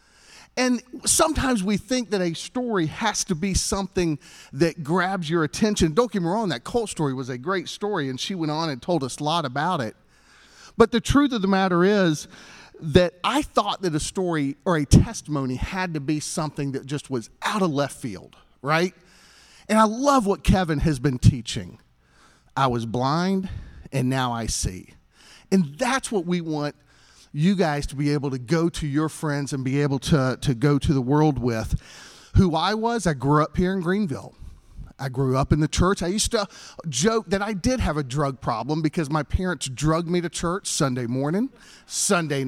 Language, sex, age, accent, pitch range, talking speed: English, male, 40-59, American, 140-200 Hz, 200 wpm